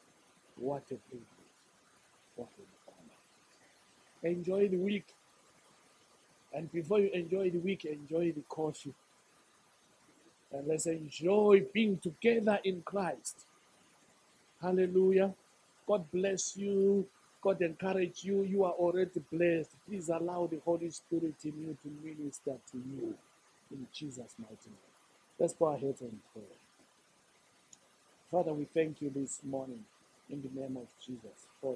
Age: 60-79